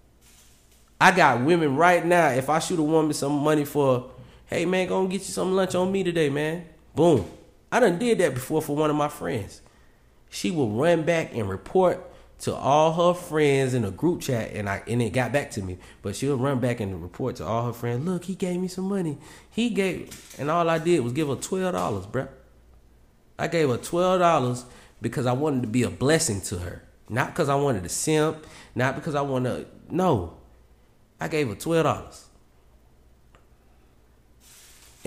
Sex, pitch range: male, 100-160 Hz